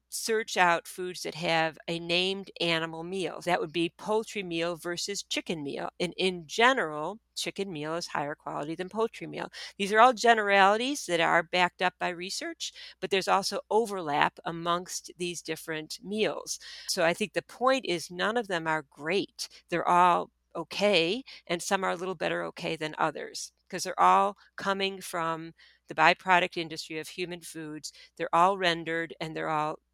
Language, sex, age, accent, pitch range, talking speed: English, female, 50-69, American, 165-195 Hz, 170 wpm